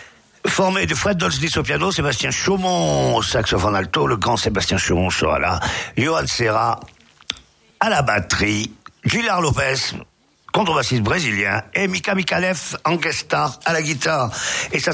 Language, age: French, 50-69